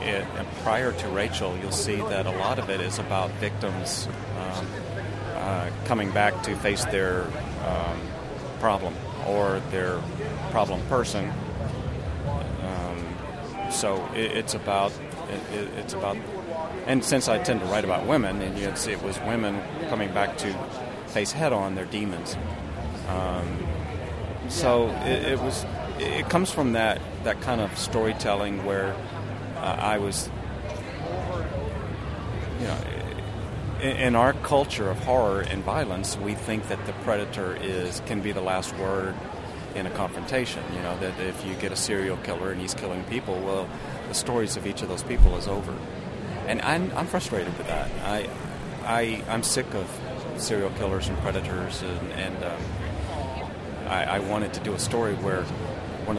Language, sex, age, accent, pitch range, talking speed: English, male, 40-59, American, 90-105 Hz, 160 wpm